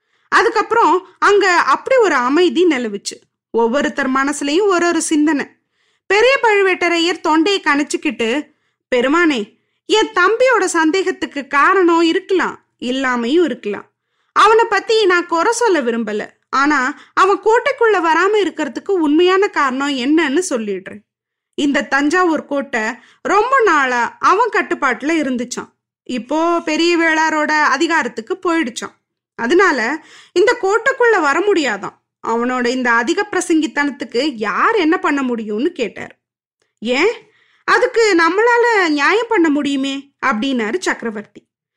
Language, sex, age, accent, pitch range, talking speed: Tamil, female, 20-39, native, 270-370 Hz, 105 wpm